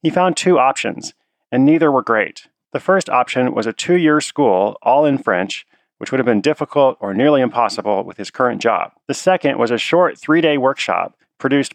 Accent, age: American, 40-59